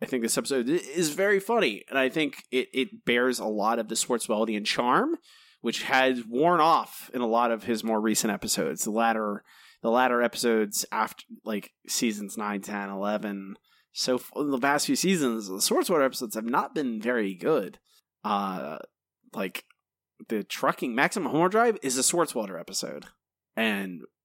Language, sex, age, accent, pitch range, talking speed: English, male, 30-49, American, 115-165 Hz, 170 wpm